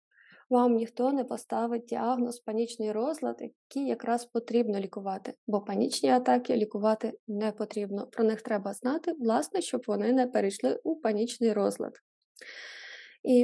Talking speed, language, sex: 135 wpm, Ukrainian, female